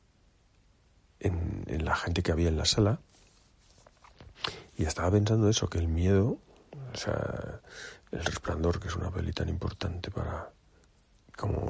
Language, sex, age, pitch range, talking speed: Spanish, male, 50-69, 80-100 Hz, 145 wpm